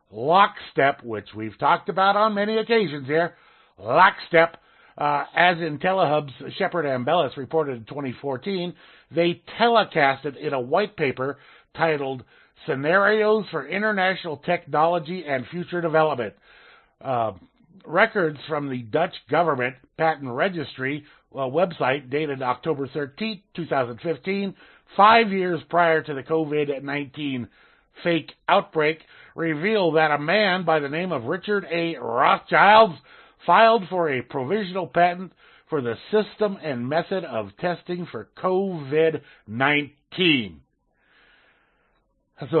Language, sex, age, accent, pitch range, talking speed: English, male, 50-69, American, 135-175 Hz, 115 wpm